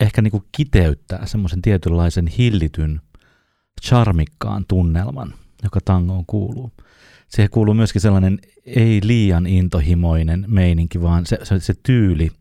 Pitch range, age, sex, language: 80-105 Hz, 30-49, male, Finnish